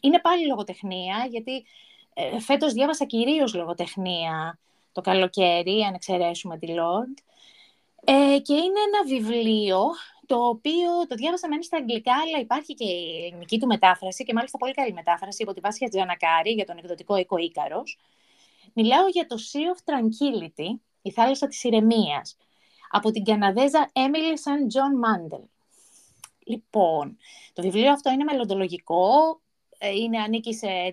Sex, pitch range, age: female, 195-285 Hz, 20-39